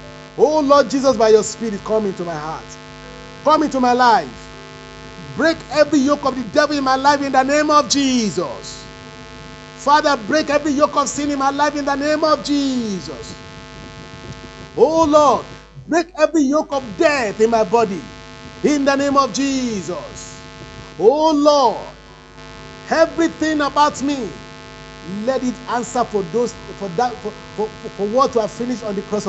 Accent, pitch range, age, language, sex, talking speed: Nigerian, 190-280 Hz, 50-69, English, male, 160 wpm